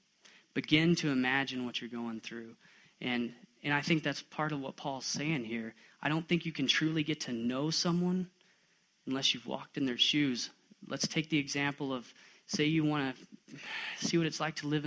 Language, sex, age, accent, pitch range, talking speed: English, male, 20-39, American, 125-150 Hz, 200 wpm